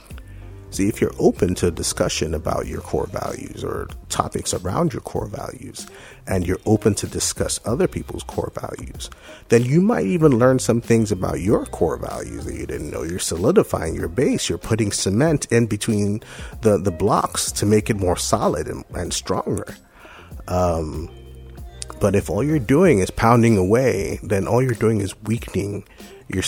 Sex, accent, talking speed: male, American, 170 wpm